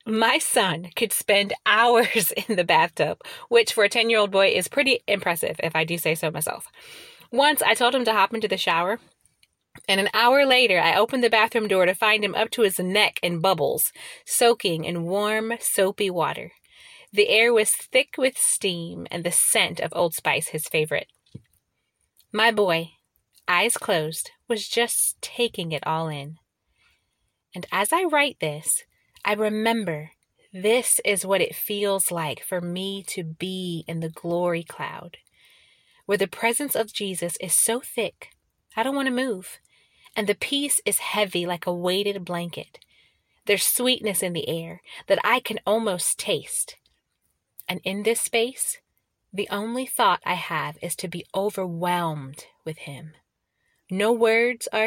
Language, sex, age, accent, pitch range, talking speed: English, female, 30-49, American, 175-235 Hz, 165 wpm